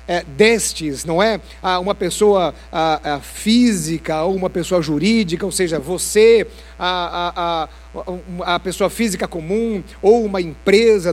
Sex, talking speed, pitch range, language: male, 135 wpm, 175-230 Hz, Portuguese